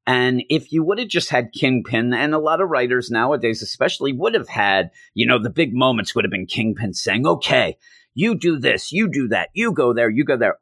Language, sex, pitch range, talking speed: English, male, 110-140 Hz, 230 wpm